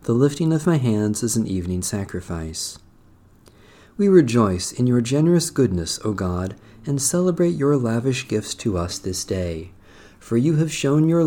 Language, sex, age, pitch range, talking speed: English, male, 50-69, 95-130 Hz, 165 wpm